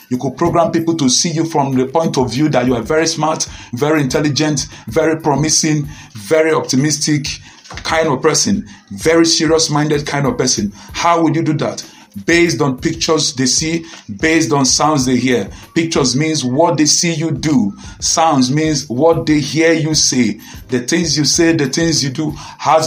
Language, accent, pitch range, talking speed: English, Nigerian, 130-160 Hz, 185 wpm